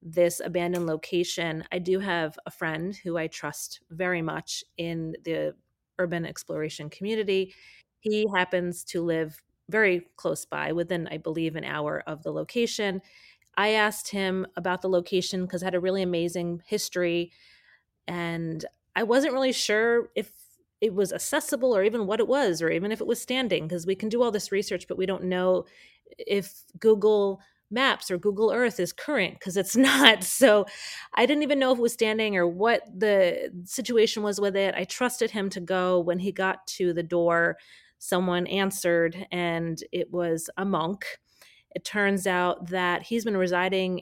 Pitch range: 175-210 Hz